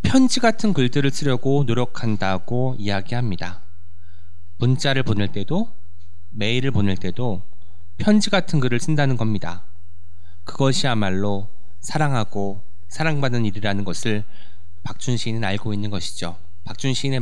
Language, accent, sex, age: Korean, native, male, 20-39